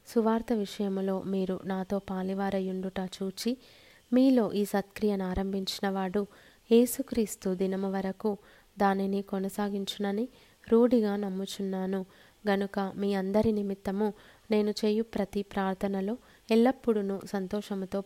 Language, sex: Telugu, female